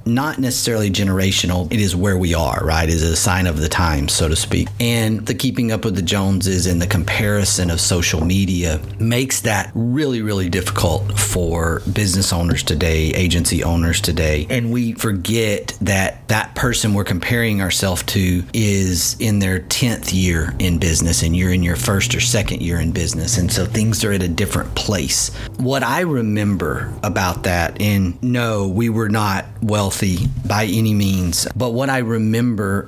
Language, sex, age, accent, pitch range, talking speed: English, male, 40-59, American, 90-110 Hz, 175 wpm